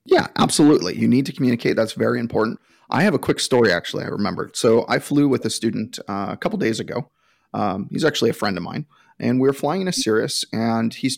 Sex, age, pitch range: male, 30-49, 115-135 Hz